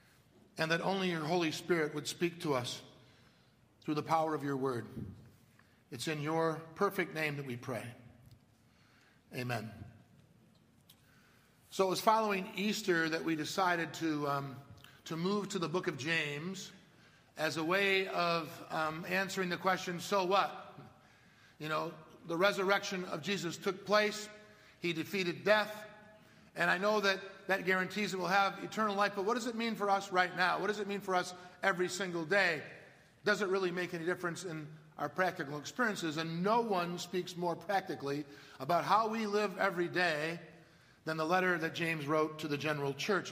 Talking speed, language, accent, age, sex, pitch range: 170 wpm, English, American, 50-69, male, 145-190 Hz